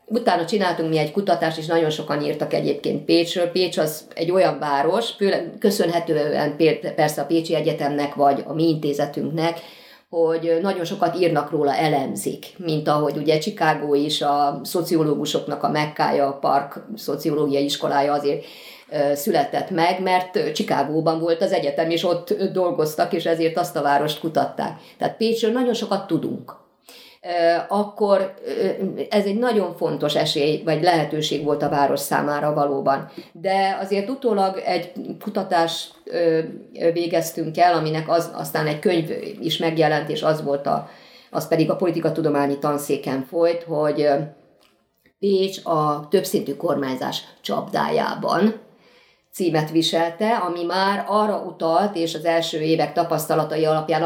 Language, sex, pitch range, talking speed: Hungarian, female, 150-180 Hz, 140 wpm